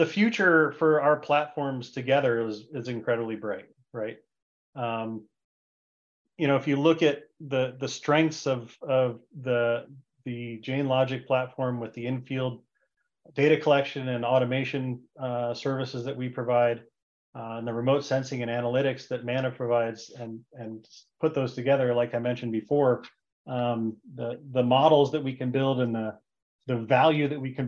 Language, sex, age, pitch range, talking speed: English, male, 30-49, 115-140 Hz, 160 wpm